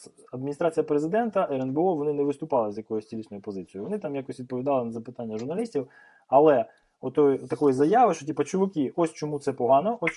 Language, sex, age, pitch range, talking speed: Ukrainian, male, 20-39, 120-160 Hz, 170 wpm